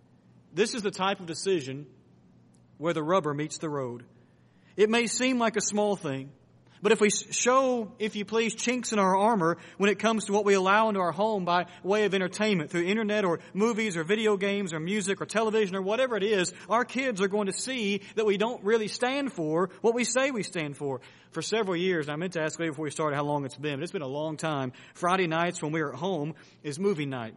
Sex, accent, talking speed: male, American, 235 wpm